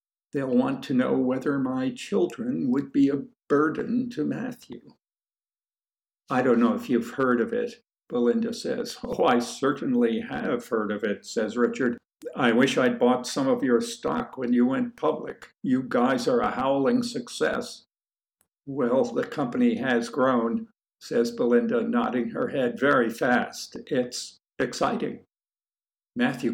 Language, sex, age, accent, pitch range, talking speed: English, male, 60-79, American, 150-250 Hz, 145 wpm